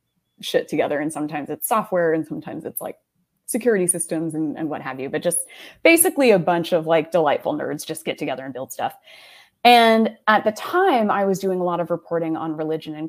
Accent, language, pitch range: American, English, 160-210 Hz